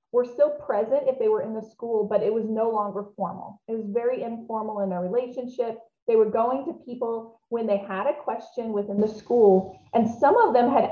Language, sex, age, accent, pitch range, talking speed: English, female, 30-49, American, 200-260 Hz, 220 wpm